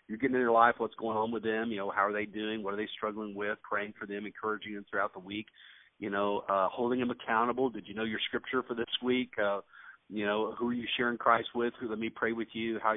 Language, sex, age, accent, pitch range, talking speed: English, male, 40-59, American, 105-120 Hz, 270 wpm